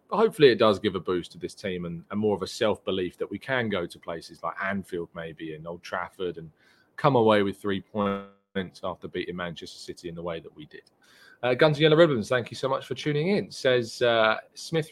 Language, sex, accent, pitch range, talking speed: English, male, British, 100-130 Hz, 230 wpm